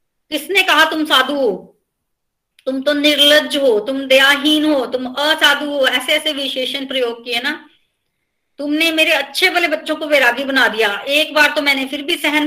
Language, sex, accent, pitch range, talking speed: Hindi, female, native, 265-325 Hz, 180 wpm